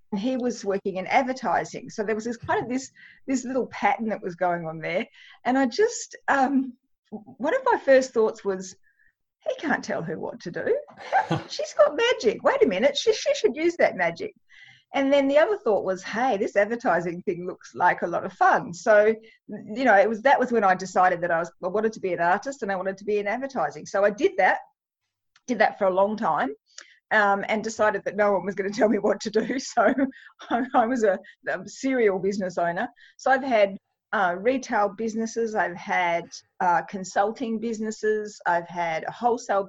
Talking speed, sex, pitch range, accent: 210 wpm, female, 195-260 Hz, Australian